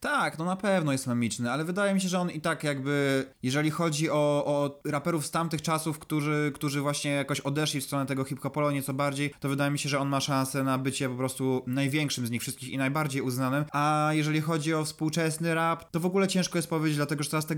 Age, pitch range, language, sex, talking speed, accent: 20-39, 135-165 Hz, Polish, male, 240 wpm, native